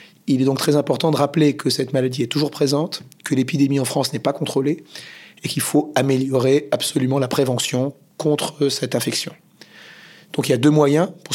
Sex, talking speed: male, 195 wpm